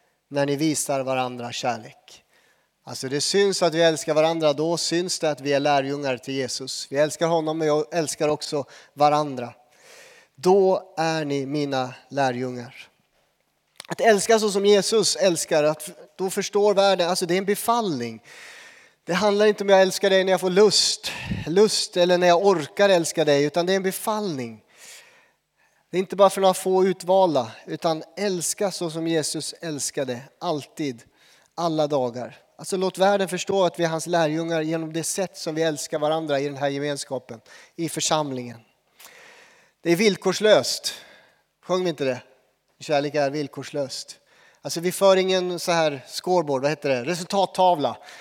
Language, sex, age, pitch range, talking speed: Swedish, male, 30-49, 145-185 Hz, 165 wpm